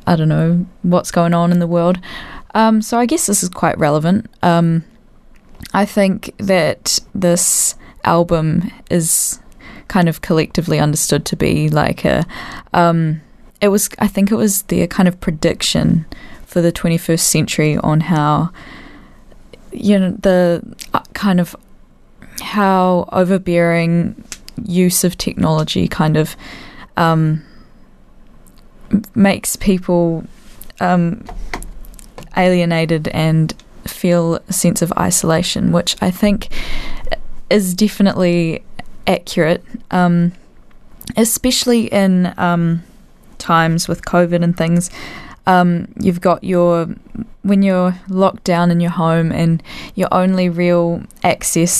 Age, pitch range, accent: 10-29, 170-195 Hz, Australian